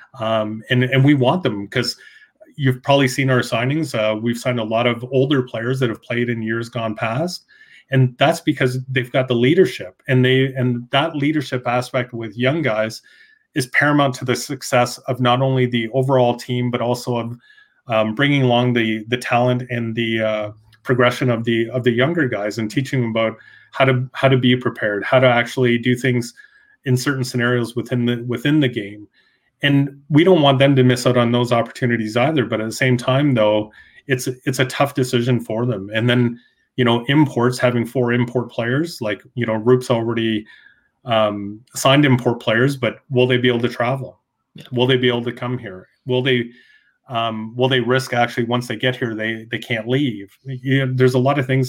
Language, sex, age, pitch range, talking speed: English, male, 30-49, 115-130 Hz, 205 wpm